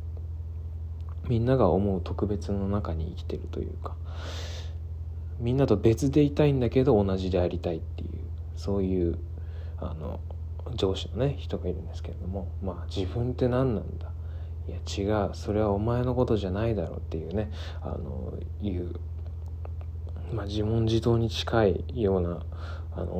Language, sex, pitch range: Japanese, male, 85-100 Hz